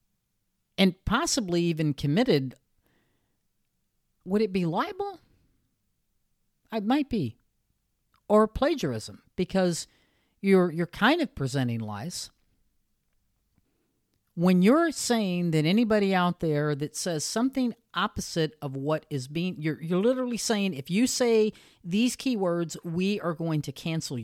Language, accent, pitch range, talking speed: English, American, 130-190 Hz, 120 wpm